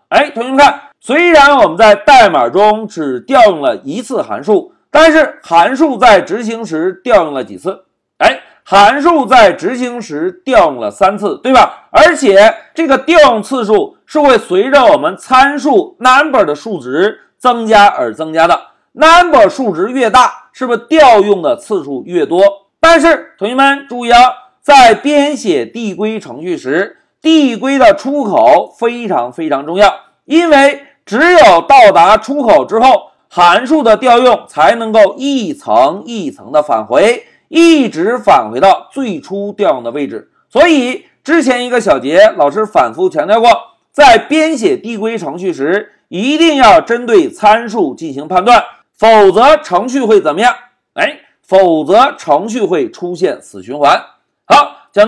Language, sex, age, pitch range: Chinese, male, 50-69, 220-320 Hz